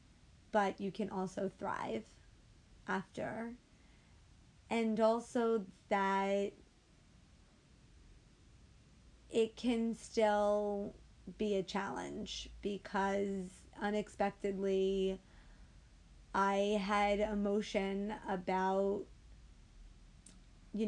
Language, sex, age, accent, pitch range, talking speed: English, female, 30-49, American, 190-205 Hz, 65 wpm